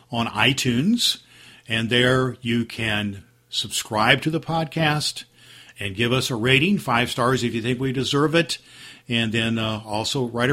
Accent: American